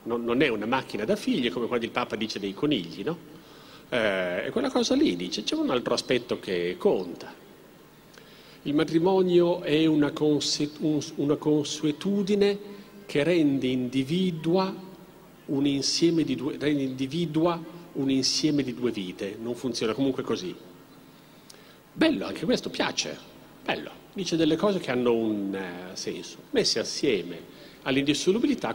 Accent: native